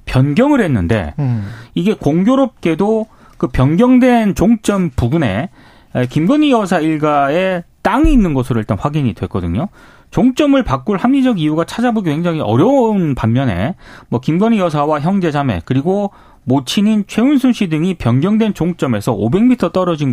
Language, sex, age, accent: Korean, male, 30-49, native